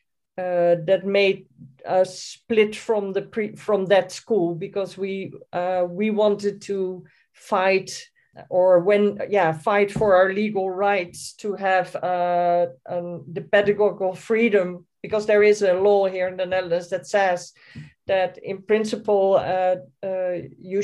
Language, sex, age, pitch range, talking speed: Polish, female, 40-59, 180-205 Hz, 145 wpm